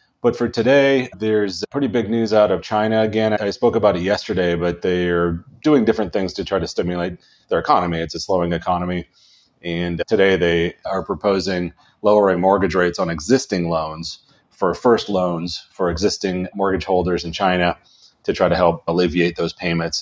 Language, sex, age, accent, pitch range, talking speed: English, male, 30-49, American, 85-105 Hz, 175 wpm